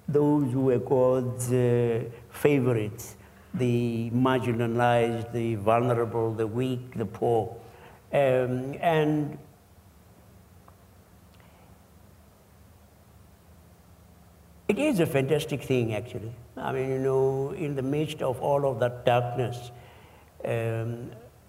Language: English